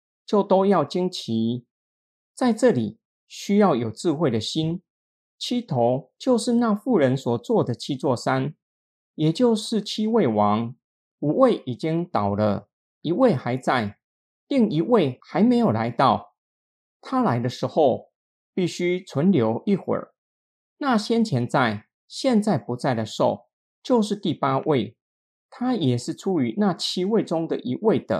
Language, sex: Chinese, male